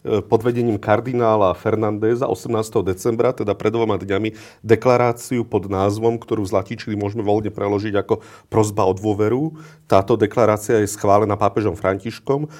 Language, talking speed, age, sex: Slovak, 135 wpm, 40-59, male